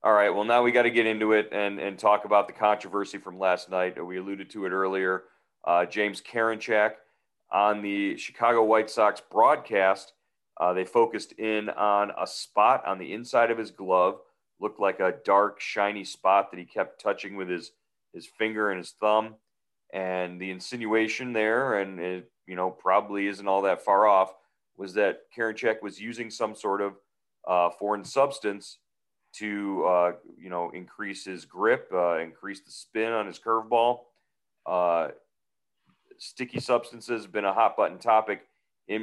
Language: English